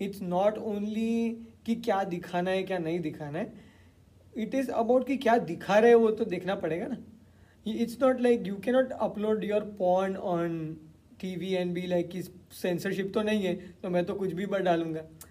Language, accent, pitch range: English, Indian, 175-220 Hz